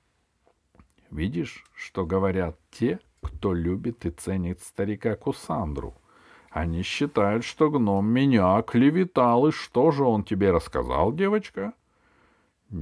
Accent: native